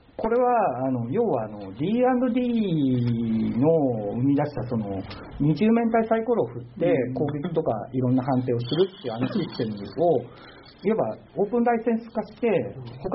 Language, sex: Japanese, male